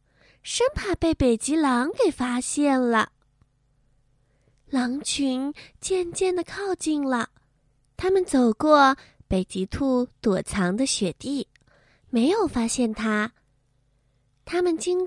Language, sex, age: Chinese, female, 20-39